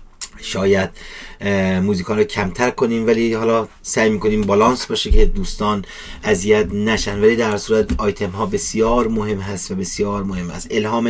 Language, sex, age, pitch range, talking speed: Persian, male, 30-49, 100-120 Hz, 150 wpm